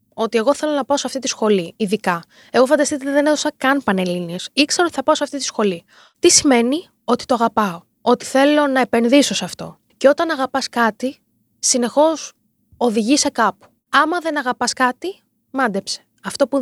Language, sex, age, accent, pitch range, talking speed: Greek, female, 20-39, native, 230-300 Hz, 185 wpm